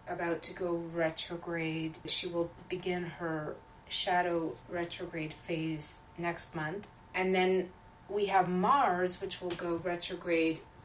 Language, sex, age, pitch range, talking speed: English, female, 30-49, 170-200 Hz, 120 wpm